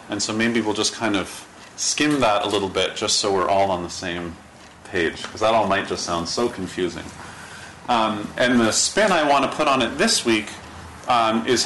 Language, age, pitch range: English, 30-49, 90-125 Hz